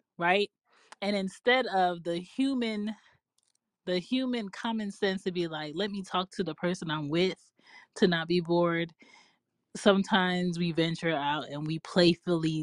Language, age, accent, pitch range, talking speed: English, 20-39, American, 165-210 Hz, 150 wpm